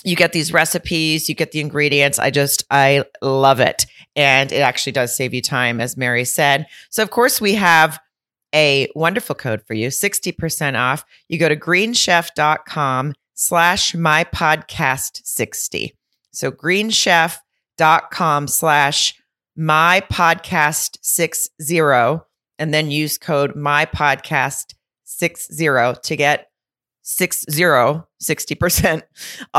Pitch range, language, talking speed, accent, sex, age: 140-175 Hz, English, 110 wpm, American, female, 40-59